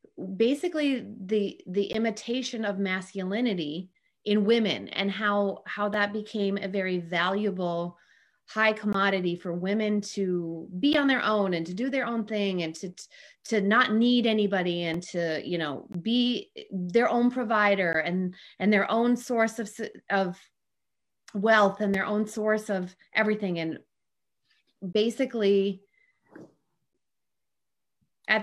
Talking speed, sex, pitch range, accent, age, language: 130 wpm, female, 185-225 Hz, American, 30-49, English